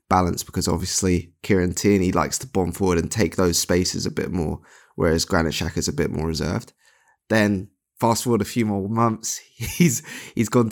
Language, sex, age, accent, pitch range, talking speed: English, male, 20-39, British, 90-105 Hz, 190 wpm